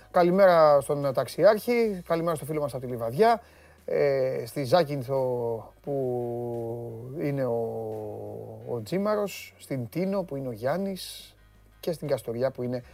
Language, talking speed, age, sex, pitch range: Greek, 135 wpm, 30-49, male, 130-195 Hz